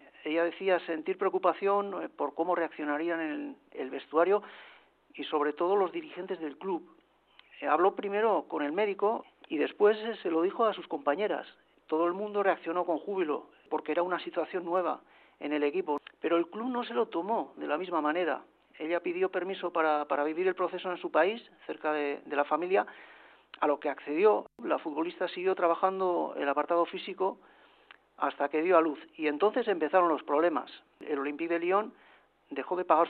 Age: 40-59